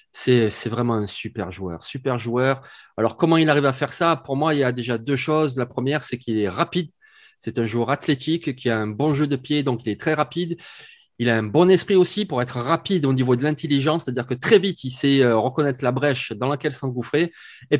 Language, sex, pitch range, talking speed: French, male, 125-160 Hz, 235 wpm